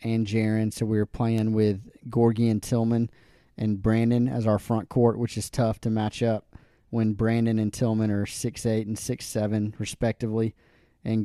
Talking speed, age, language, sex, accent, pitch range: 170 wpm, 30-49, English, male, American, 110-125 Hz